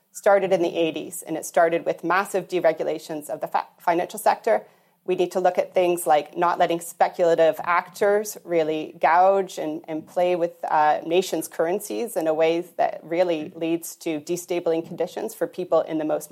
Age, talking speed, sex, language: 30-49, 175 wpm, female, English